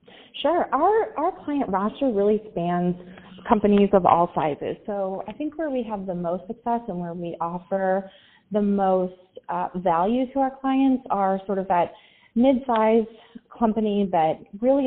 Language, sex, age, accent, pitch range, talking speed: English, female, 30-49, American, 175-220 Hz, 160 wpm